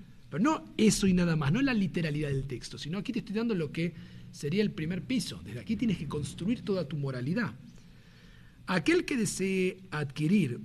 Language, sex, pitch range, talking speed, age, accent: Spanish, male, 140-210 Hz, 190 wpm, 50-69, Argentinian